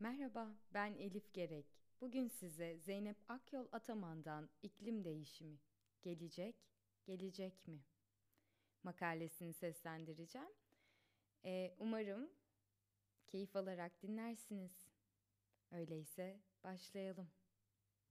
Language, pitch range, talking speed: Turkish, 145-205 Hz, 75 wpm